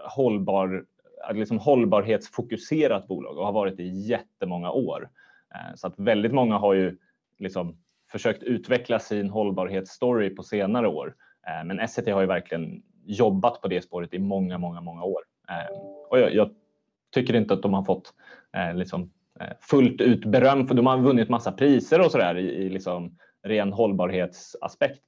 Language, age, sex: Swedish, 20-39, male